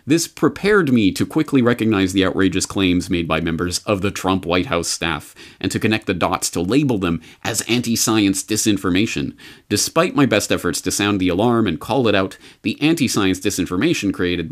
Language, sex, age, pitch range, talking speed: English, male, 40-59, 95-135 Hz, 185 wpm